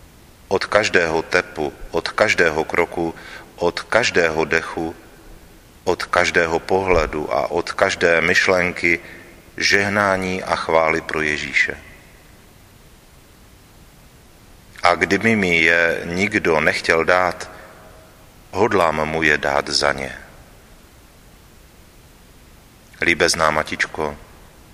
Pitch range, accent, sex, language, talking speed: 80-90 Hz, native, male, Czech, 85 wpm